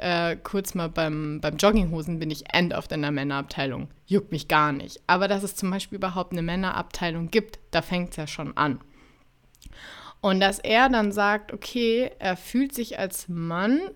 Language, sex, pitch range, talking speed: German, female, 175-215 Hz, 185 wpm